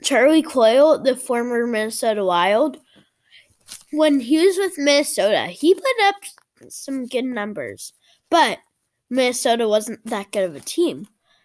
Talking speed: 130 wpm